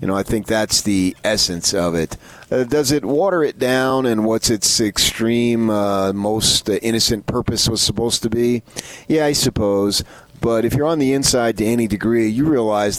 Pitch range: 95-115 Hz